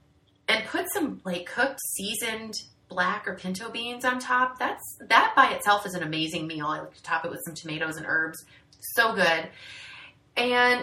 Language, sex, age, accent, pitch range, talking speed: English, female, 30-49, American, 180-245 Hz, 185 wpm